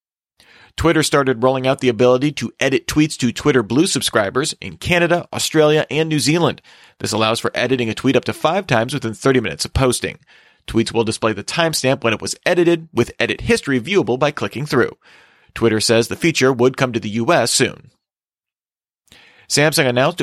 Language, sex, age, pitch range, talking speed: English, male, 30-49, 115-155 Hz, 185 wpm